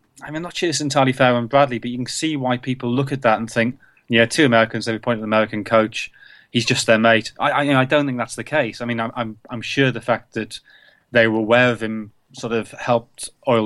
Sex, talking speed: male, 260 wpm